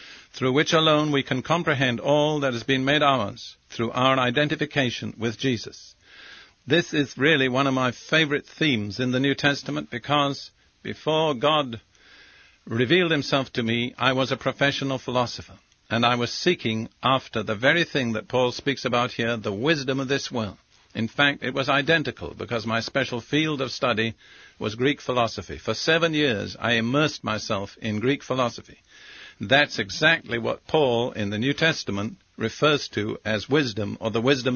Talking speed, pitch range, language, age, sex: 170 wpm, 115-145 Hz, English, 50-69, male